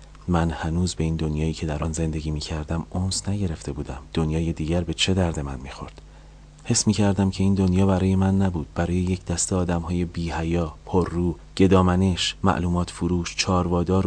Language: Persian